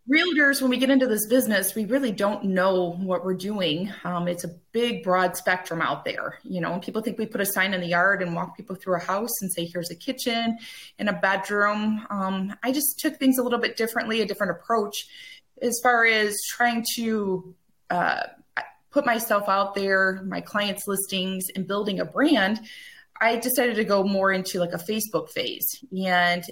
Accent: American